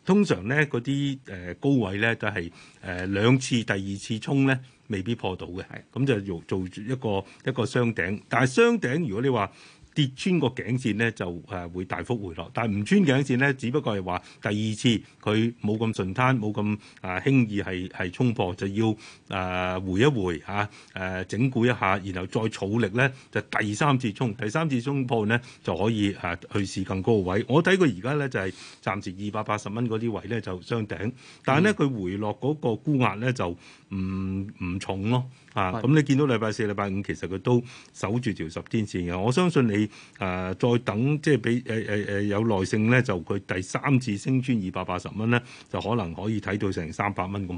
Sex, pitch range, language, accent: male, 95-125 Hz, Chinese, native